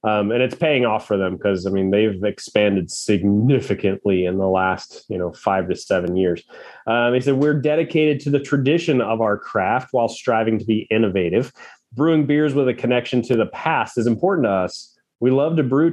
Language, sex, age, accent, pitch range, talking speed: English, male, 30-49, American, 105-135 Hz, 205 wpm